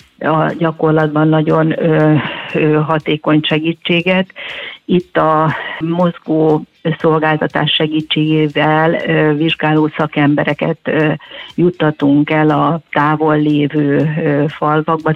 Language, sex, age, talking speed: Hungarian, female, 50-69, 70 wpm